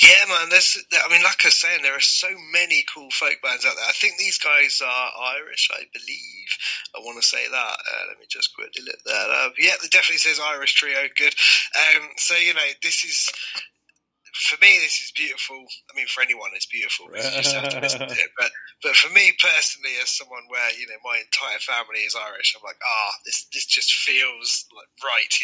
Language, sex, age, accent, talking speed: English, male, 20-39, British, 205 wpm